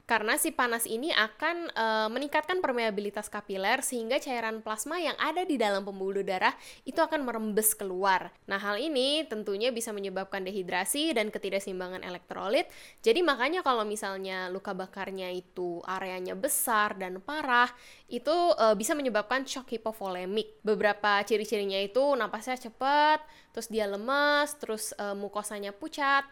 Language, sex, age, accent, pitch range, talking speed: Indonesian, female, 10-29, native, 200-255 Hz, 140 wpm